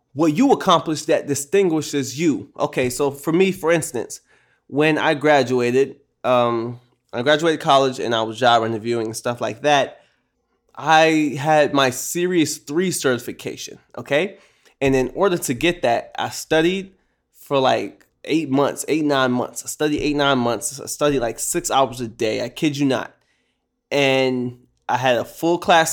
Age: 20-39